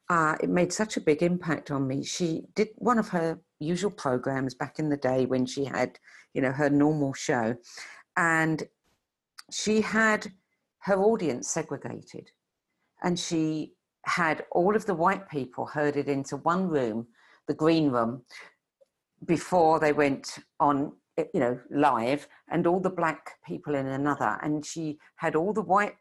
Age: 50-69